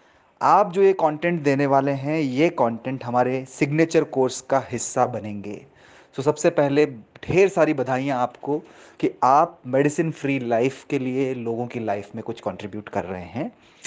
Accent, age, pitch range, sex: native, 30-49, 125-160 Hz, male